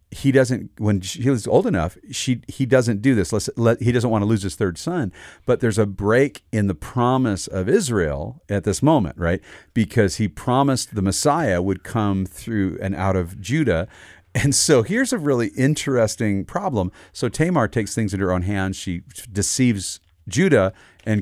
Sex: male